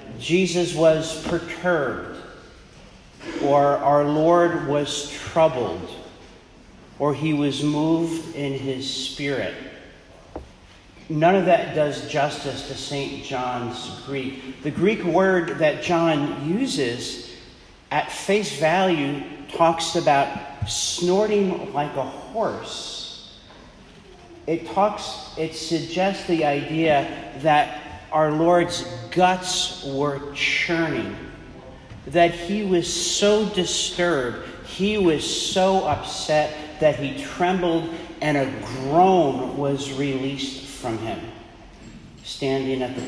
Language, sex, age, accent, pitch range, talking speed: English, male, 50-69, American, 140-180 Hz, 100 wpm